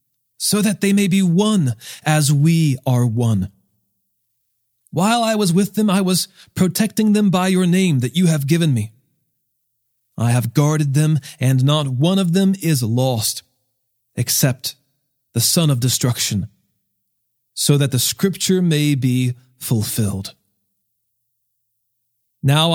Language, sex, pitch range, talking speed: English, male, 120-165 Hz, 135 wpm